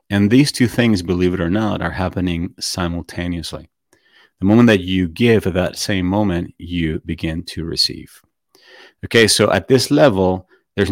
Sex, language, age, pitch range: male, English, 40-59, 85-100 Hz